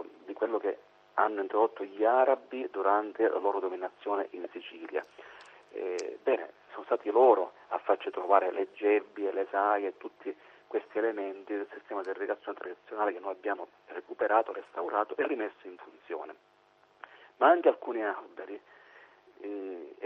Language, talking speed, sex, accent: Italian, 140 wpm, male, native